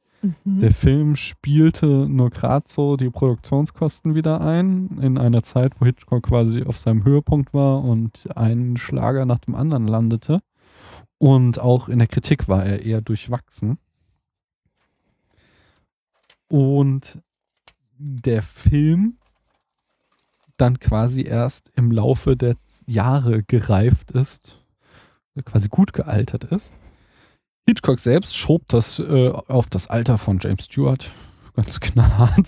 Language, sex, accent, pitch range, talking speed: German, male, German, 110-135 Hz, 120 wpm